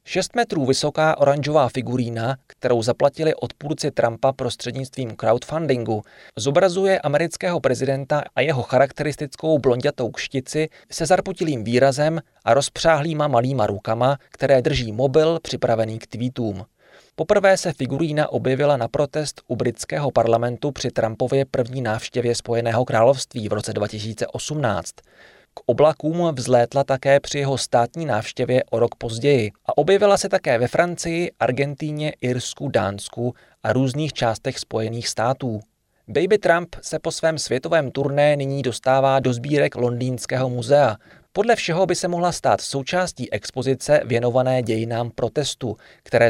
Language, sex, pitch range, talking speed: Czech, male, 120-150 Hz, 130 wpm